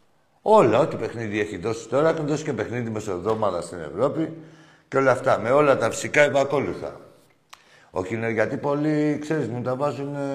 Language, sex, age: Greek, male, 60-79